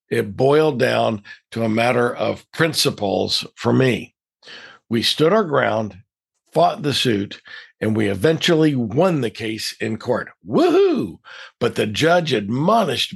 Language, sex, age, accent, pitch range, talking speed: English, male, 60-79, American, 110-150 Hz, 135 wpm